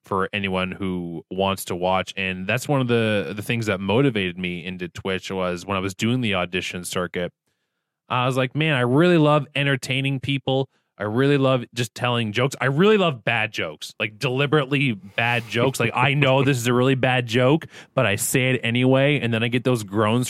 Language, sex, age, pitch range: English, male, 20-39, 105-135 Hz